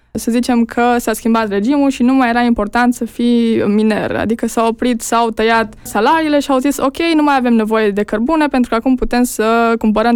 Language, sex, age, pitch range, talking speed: Romanian, female, 20-39, 215-250 Hz, 215 wpm